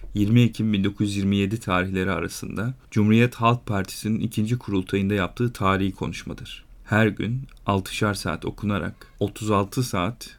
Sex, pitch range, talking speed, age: male, 100-120 Hz, 115 wpm, 40-59